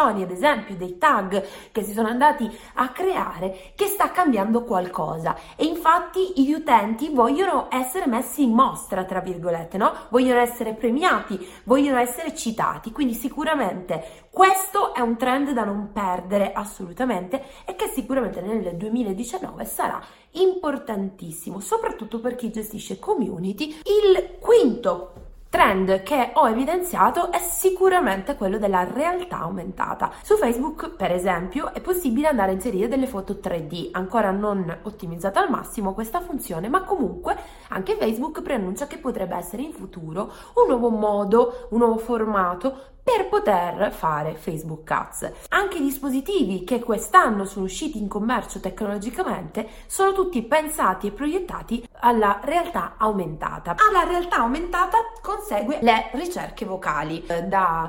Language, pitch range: Italian, 195-300 Hz